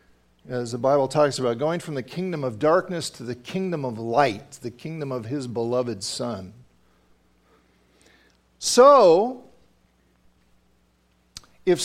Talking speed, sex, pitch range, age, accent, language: 120 wpm, male, 110-185 Hz, 50-69, American, English